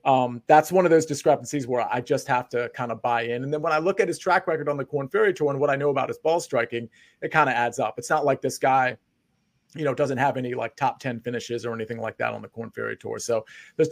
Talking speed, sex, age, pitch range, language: 285 wpm, male, 40-59, 125-155 Hz, English